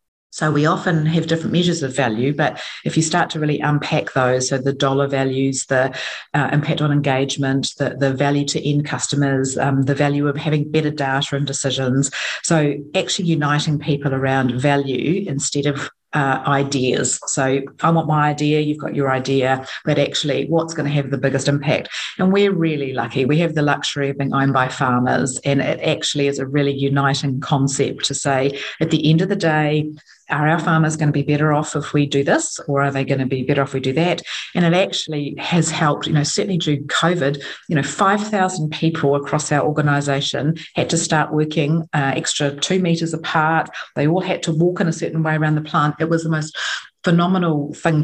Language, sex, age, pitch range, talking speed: English, female, 40-59, 140-160 Hz, 205 wpm